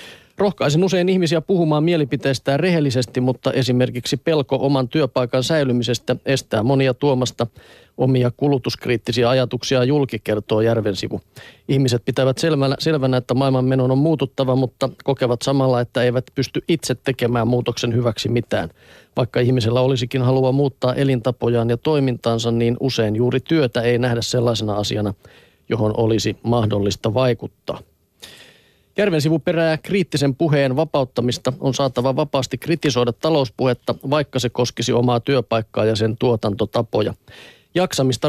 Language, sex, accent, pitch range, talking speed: Finnish, male, native, 120-140 Hz, 125 wpm